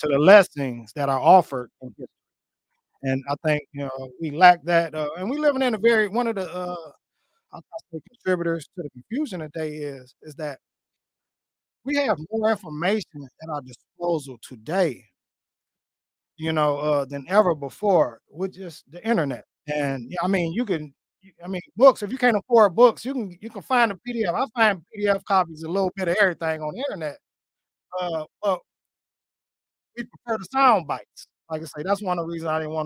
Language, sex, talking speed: English, male, 190 wpm